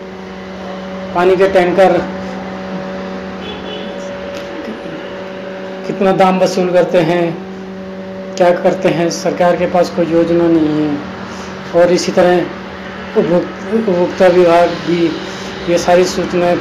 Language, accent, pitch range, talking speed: Hindi, native, 165-190 Hz, 100 wpm